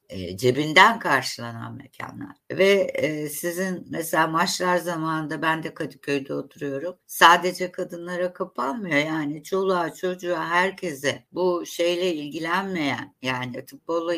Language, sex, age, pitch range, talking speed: Turkish, female, 60-79, 135-180 Hz, 100 wpm